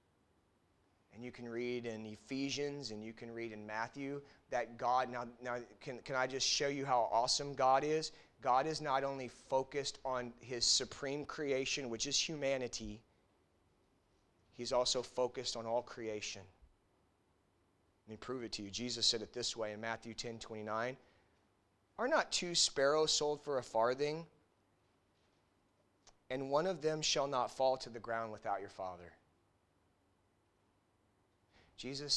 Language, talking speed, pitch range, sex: English, 155 wpm, 100-135 Hz, male